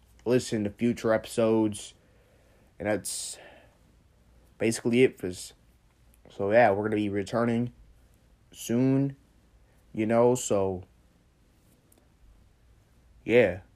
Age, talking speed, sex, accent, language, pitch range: 20-39, 85 wpm, male, American, English, 105-120 Hz